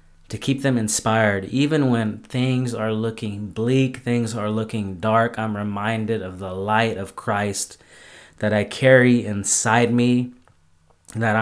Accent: American